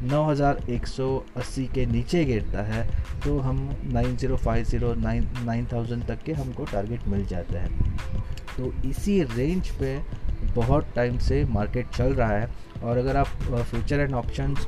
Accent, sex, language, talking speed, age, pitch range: native, male, Hindi, 140 wpm, 20-39, 110-135 Hz